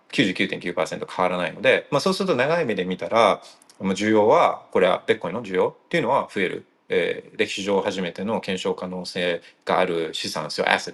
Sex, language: male, Japanese